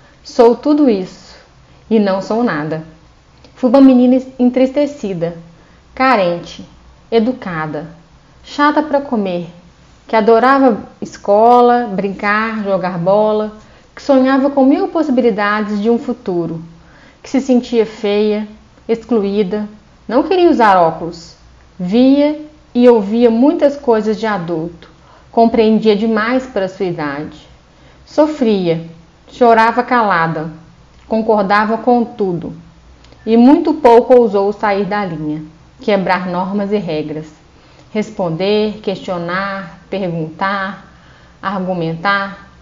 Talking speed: 105 wpm